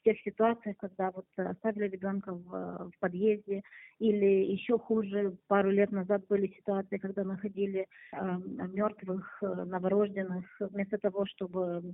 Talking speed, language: 125 wpm, Russian